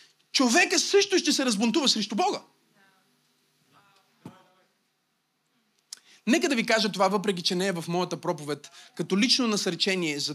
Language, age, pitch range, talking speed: Bulgarian, 30-49, 200-290 Hz, 135 wpm